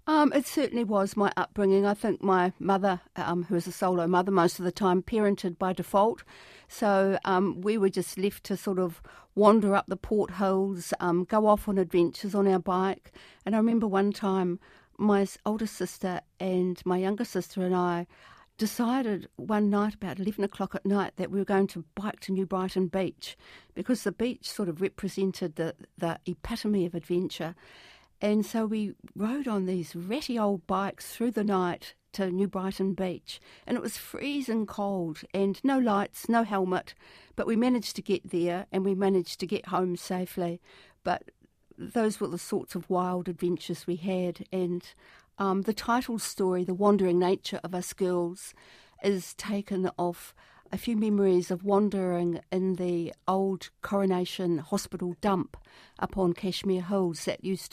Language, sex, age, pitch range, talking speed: English, female, 50-69, 180-205 Hz, 175 wpm